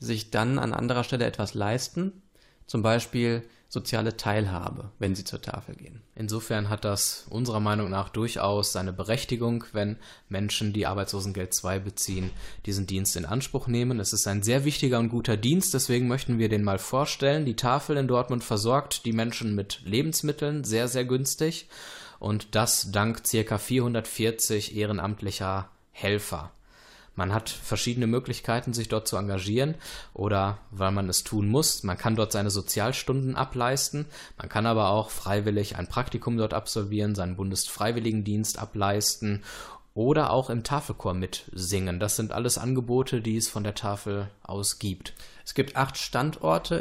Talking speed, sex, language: 155 wpm, male, German